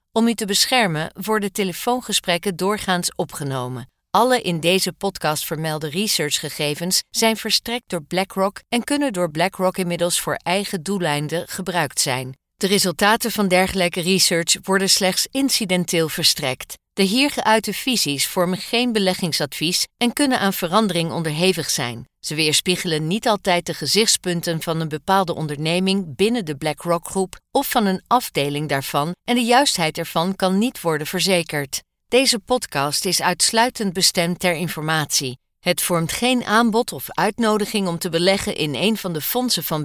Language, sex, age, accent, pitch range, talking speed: Dutch, female, 50-69, Dutch, 160-210 Hz, 150 wpm